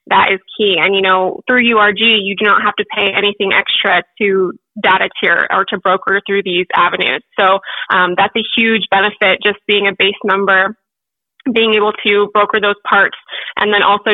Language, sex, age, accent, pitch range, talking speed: English, female, 20-39, American, 195-215 Hz, 190 wpm